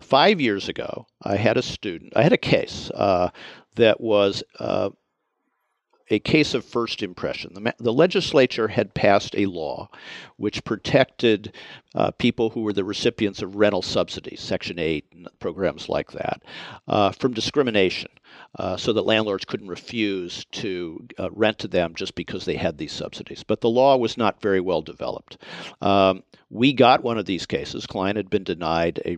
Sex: male